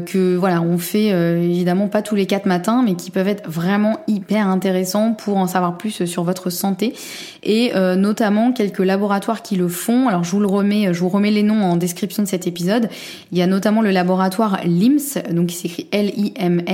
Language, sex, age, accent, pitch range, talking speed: French, female, 20-39, French, 180-210 Hz, 220 wpm